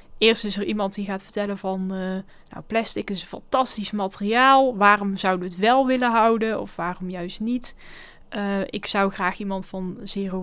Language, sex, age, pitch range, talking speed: Dutch, female, 10-29, 195-240 Hz, 190 wpm